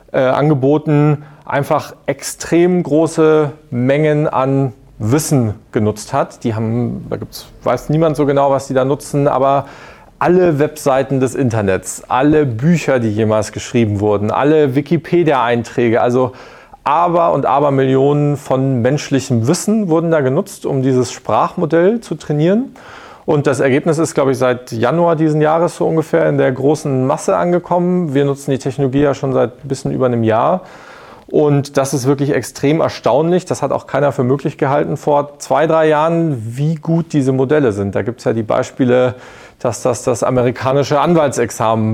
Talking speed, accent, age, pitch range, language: 160 wpm, German, 40-59, 125-155 Hz, German